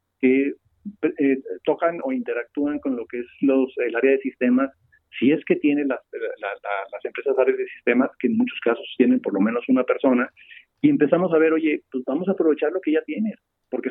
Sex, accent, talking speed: male, Mexican, 220 wpm